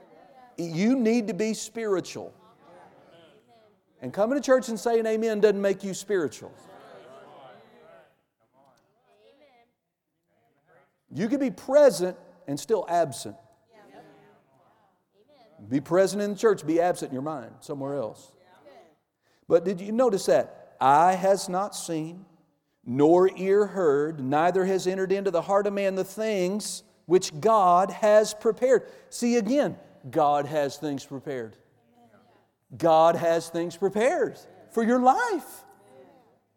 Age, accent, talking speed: 50-69, American, 120 wpm